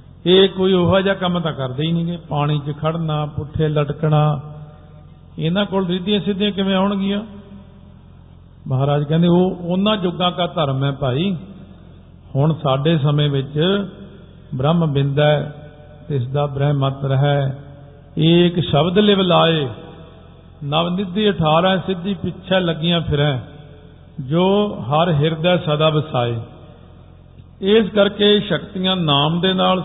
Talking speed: 125 wpm